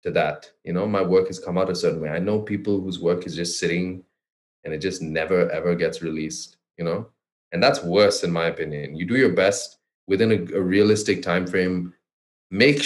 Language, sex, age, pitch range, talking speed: English, male, 20-39, 90-115 Hz, 215 wpm